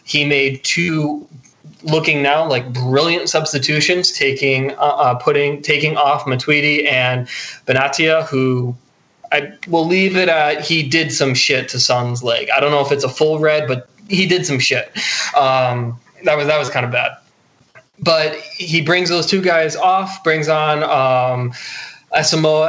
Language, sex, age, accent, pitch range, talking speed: English, male, 20-39, American, 135-165 Hz, 165 wpm